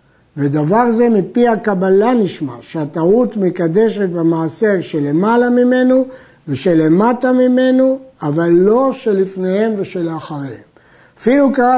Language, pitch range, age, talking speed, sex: Hebrew, 170-235 Hz, 50-69, 95 wpm, male